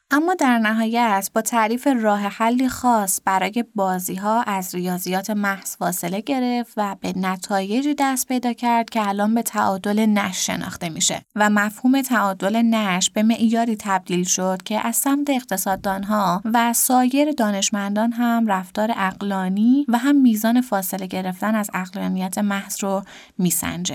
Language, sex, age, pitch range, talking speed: Persian, female, 20-39, 190-235 Hz, 140 wpm